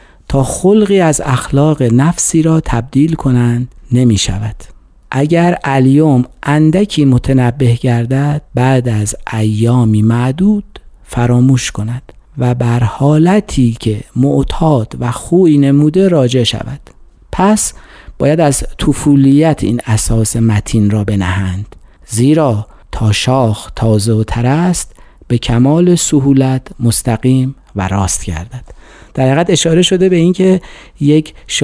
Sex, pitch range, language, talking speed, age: male, 115-145 Hz, Persian, 110 wpm, 50-69